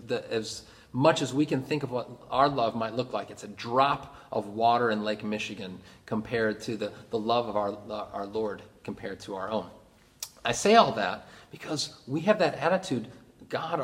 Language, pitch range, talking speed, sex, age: English, 115-140 Hz, 195 wpm, male, 30-49